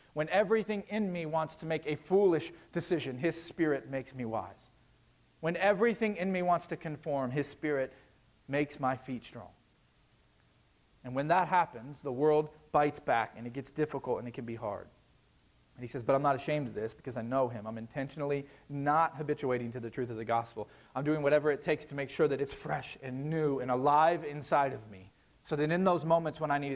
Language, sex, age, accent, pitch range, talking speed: English, male, 40-59, American, 125-160 Hz, 210 wpm